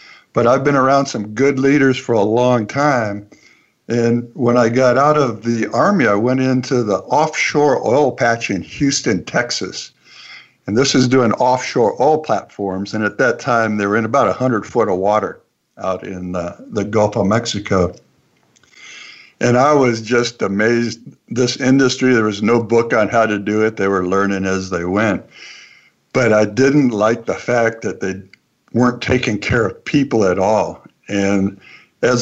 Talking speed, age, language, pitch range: 175 wpm, 60-79, English, 105-125 Hz